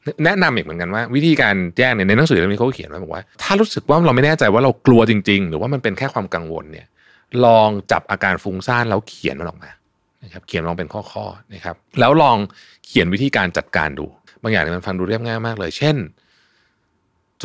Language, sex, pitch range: Thai, male, 95-145 Hz